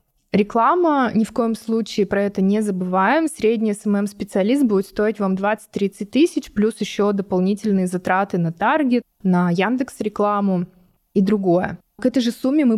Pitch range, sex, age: 195-225 Hz, female, 20-39